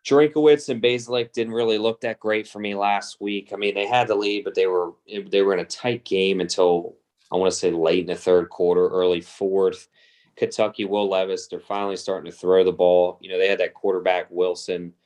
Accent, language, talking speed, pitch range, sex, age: American, English, 225 wpm, 85-100 Hz, male, 20-39